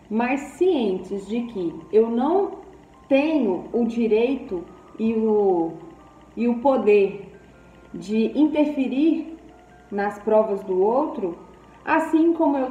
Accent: Brazilian